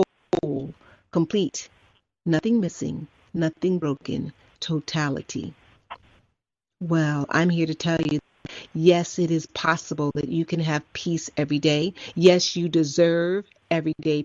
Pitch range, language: 155-190 Hz, English